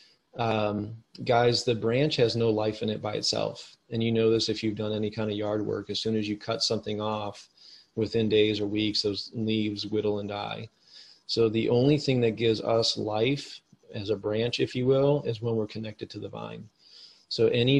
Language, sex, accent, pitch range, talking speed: English, male, American, 105-115 Hz, 210 wpm